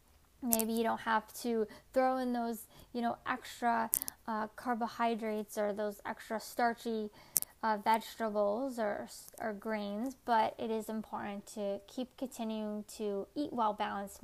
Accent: American